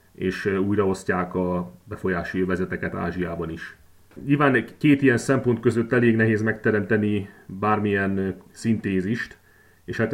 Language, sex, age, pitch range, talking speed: Hungarian, male, 30-49, 100-120 Hz, 110 wpm